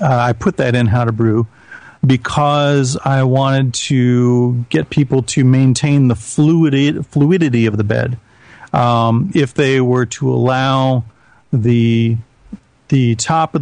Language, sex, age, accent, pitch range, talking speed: English, male, 40-59, American, 120-140 Hz, 140 wpm